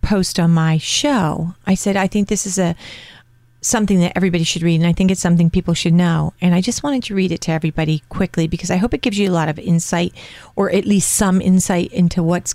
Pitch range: 155-190 Hz